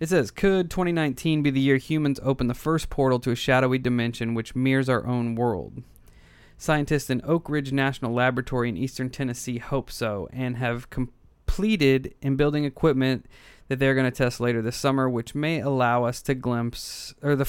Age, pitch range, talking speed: 20-39, 120-150 Hz, 185 wpm